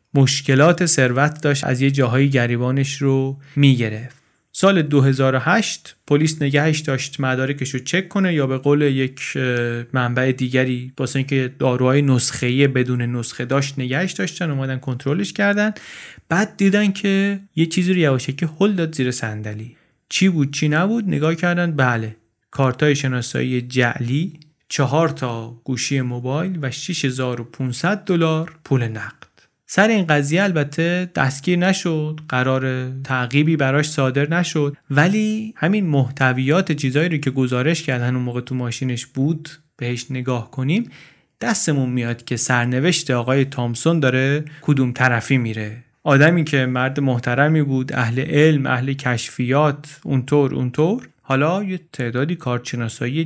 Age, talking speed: 30-49, 135 wpm